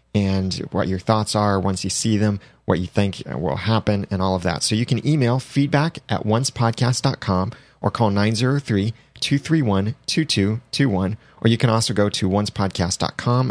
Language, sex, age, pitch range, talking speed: English, male, 30-49, 100-125 Hz, 155 wpm